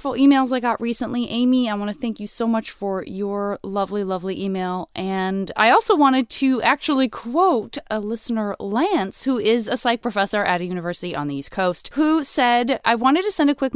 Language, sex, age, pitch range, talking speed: English, female, 20-39, 180-240 Hz, 205 wpm